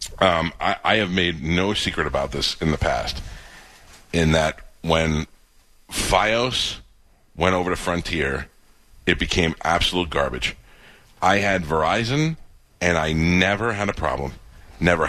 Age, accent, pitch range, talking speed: 40-59, American, 85-115 Hz, 135 wpm